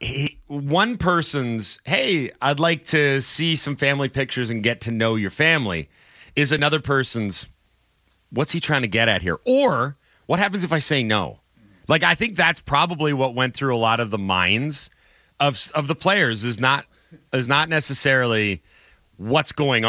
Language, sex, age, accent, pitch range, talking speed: English, male, 30-49, American, 115-155 Hz, 175 wpm